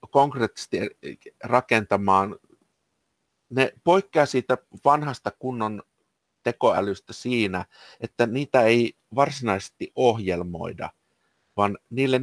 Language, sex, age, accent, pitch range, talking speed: Finnish, male, 50-69, native, 100-130 Hz, 80 wpm